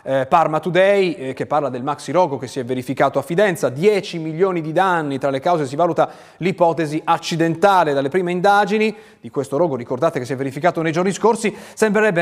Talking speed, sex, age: 200 wpm, male, 30-49